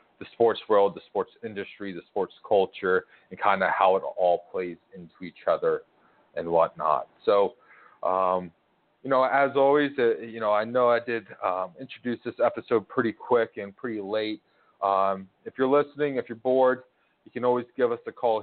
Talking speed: 185 wpm